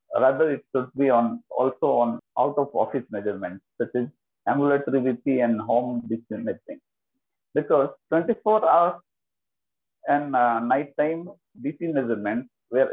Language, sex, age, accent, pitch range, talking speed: English, male, 50-69, Indian, 120-145 Hz, 120 wpm